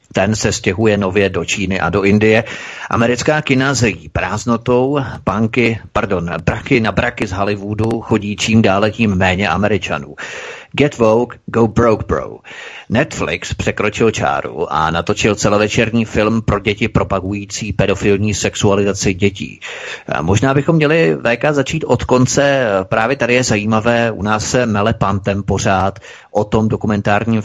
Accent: native